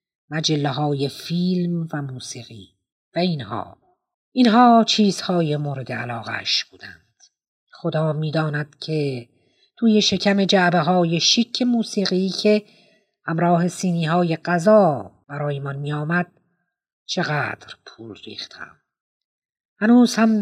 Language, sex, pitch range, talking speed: Persian, female, 145-190 Hz, 95 wpm